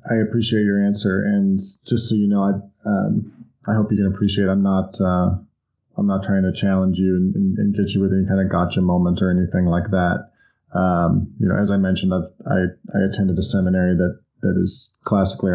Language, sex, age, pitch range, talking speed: English, male, 20-39, 95-105 Hz, 220 wpm